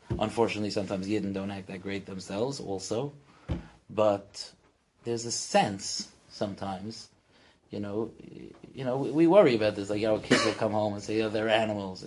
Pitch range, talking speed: 100-125 Hz, 175 wpm